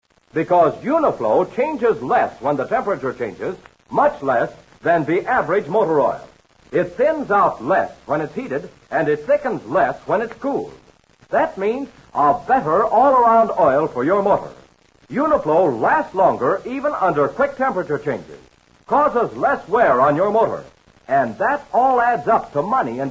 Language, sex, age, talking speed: English, male, 60-79, 155 wpm